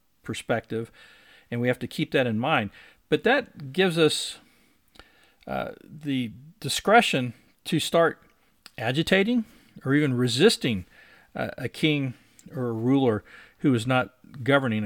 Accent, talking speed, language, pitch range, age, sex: American, 130 wpm, English, 120-165 Hz, 50-69, male